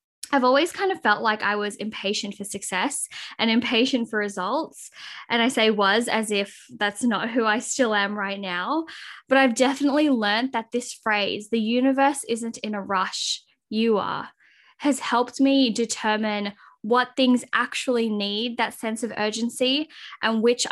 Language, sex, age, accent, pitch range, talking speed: English, female, 10-29, Australian, 215-270 Hz, 170 wpm